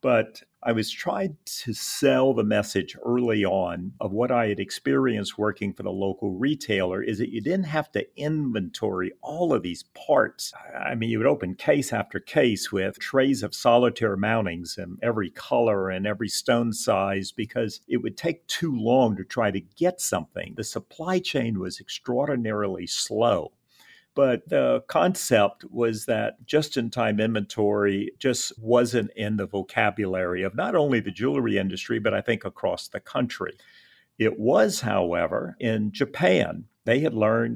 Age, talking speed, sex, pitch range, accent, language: 50-69, 165 wpm, male, 95-120 Hz, American, English